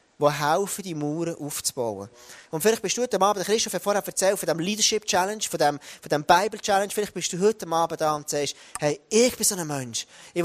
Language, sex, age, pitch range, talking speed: German, male, 30-49, 155-205 Hz, 225 wpm